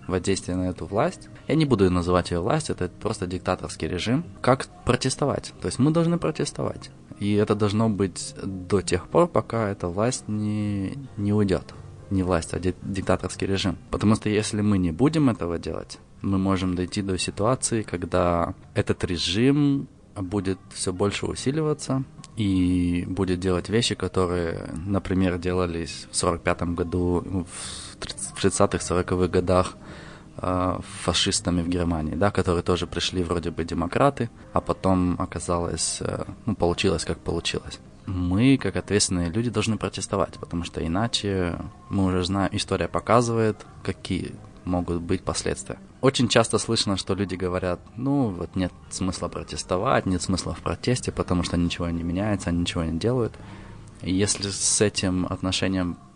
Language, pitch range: Russian, 90-105 Hz